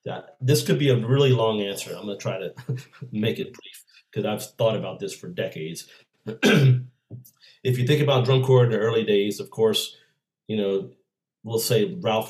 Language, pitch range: English, 105-130 Hz